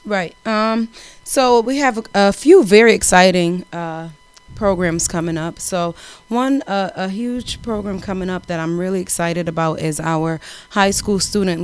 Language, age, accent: English, 30-49, American